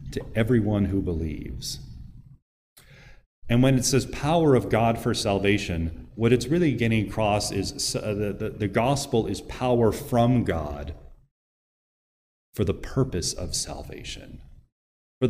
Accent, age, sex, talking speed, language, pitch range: American, 40-59, male, 125 wpm, English, 95-130 Hz